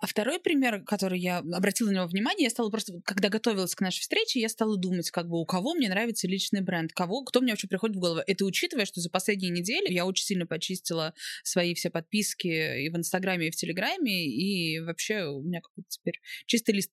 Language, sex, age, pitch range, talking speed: Russian, female, 20-39, 180-235 Hz, 220 wpm